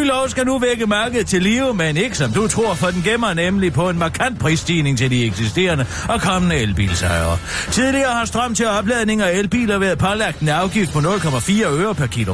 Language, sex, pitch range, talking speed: Danish, male, 125-200 Hz, 210 wpm